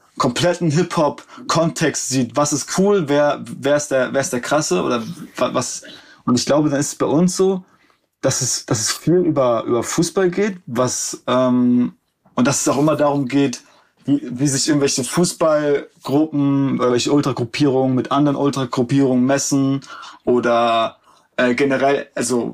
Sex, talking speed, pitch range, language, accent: male, 155 wpm, 125-155 Hz, German, German